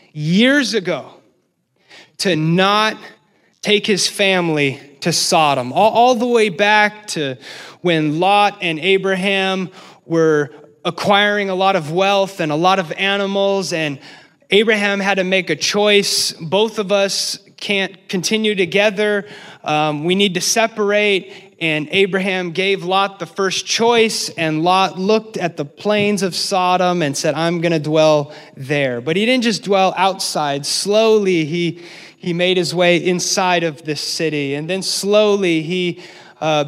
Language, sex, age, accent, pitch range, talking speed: English, male, 30-49, American, 155-200 Hz, 145 wpm